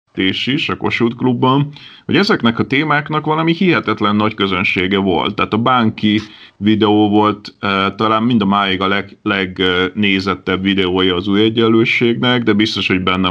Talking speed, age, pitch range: 155 wpm, 30-49, 95-115 Hz